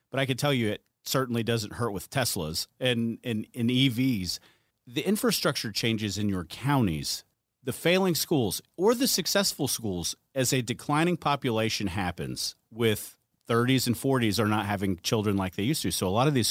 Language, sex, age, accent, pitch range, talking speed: English, male, 40-59, American, 110-145 Hz, 180 wpm